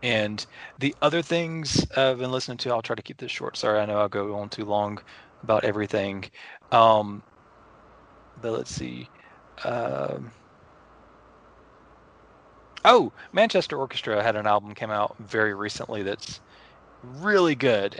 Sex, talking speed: male, 140 wpm